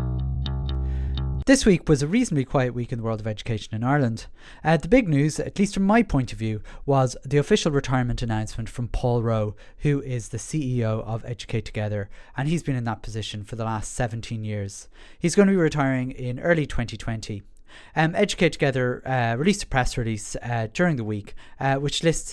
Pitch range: 110-140 Hz